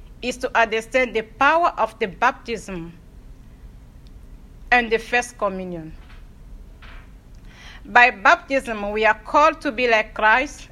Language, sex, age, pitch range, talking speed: English, female, 50-69, 215-275 Hz, 120 wpm